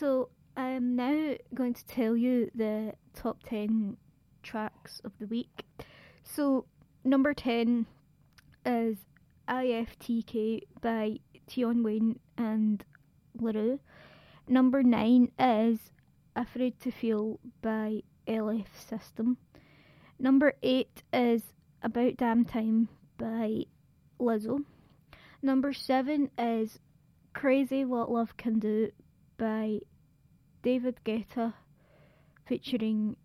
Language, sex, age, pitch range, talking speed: English, female, 20-39, 220-250 Hz, 95 wpm